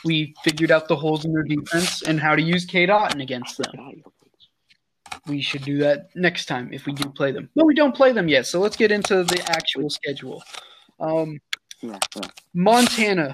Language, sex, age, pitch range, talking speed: English, male, 20-39, 140-180 Hz, 190 wpm